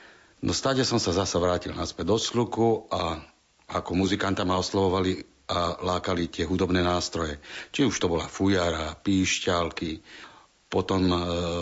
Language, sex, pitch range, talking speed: Slovak, male, 90-105 Hz, 140 wpm